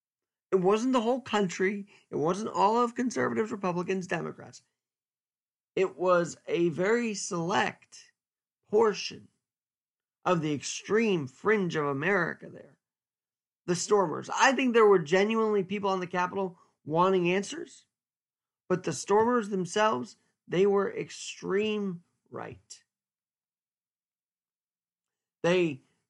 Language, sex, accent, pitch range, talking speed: English, male, American, 165-215 Hz, 110 wpm